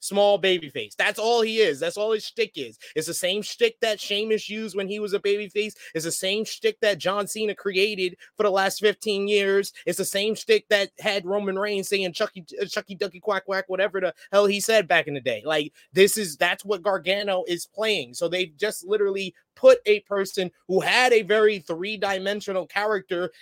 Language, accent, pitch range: English, American, 190-250 Hz